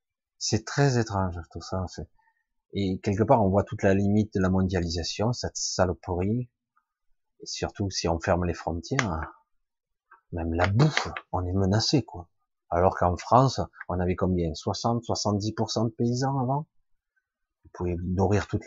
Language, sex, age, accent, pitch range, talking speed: French, male, 30-49, French, 95-120 Hz, 155 wpm